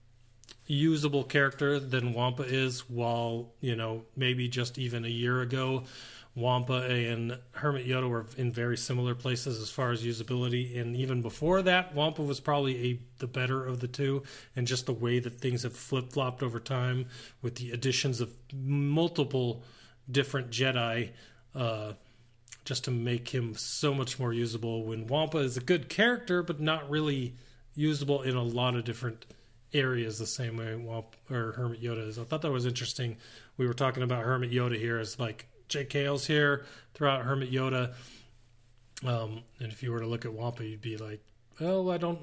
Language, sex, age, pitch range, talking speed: English, male, 30-49, 115-140 Hz, 180 wpm